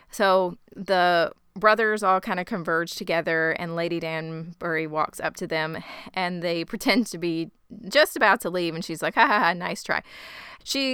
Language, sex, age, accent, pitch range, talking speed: English, female, 20-39, American, 165-200 Hz, 180 wpm